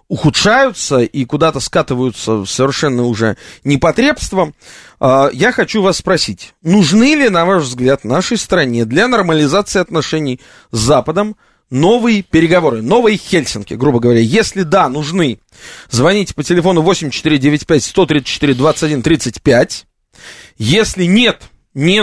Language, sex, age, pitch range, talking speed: Russian, male, 30-49, 130-190 Hz, 105 wpm